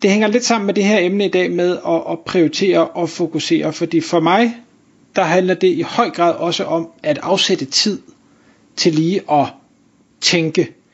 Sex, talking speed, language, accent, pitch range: male, 180 wpm, Danish, native, 165-225 Hz